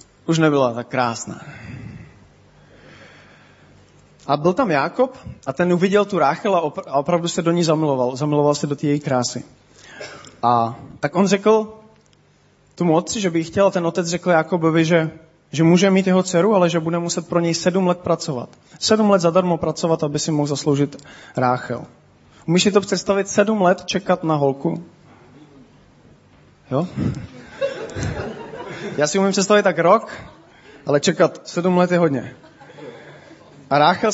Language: Czech